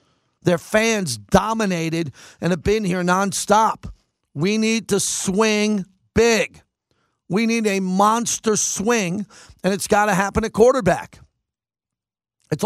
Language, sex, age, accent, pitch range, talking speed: English, male, 50-69, American, 160-200 Hz, 125 wpm